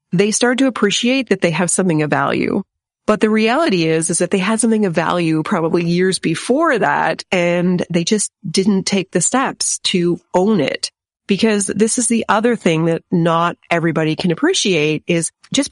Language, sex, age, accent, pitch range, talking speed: English, female, 30-49, American, 170-220 Hz, 185 wpm